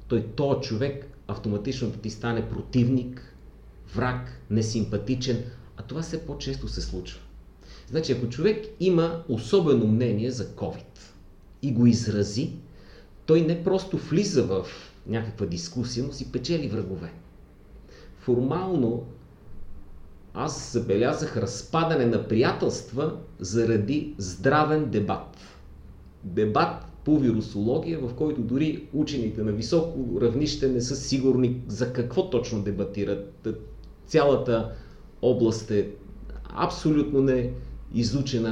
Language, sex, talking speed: Bulgarian, male, 105 wpm